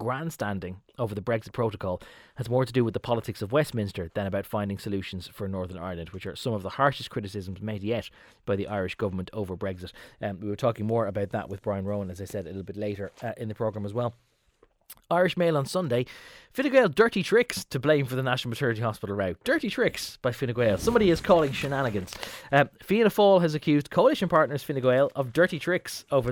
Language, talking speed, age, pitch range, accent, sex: English, 220 wpm, 20-39, 105-155 Hz, Irish, male